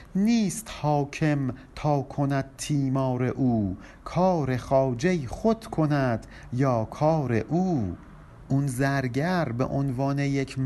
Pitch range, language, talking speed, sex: 115-165 Hz, Persian, 100 wpm, male